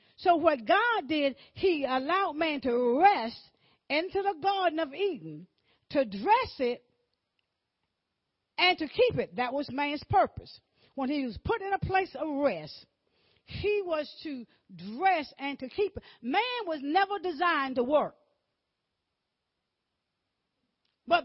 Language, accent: English, American